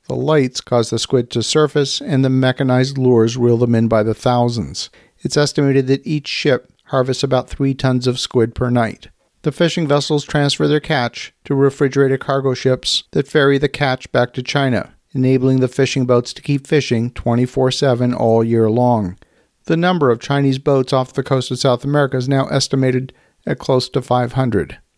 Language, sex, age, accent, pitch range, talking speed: English, male, 50-69, American, 120-140 Hz, 185 wpm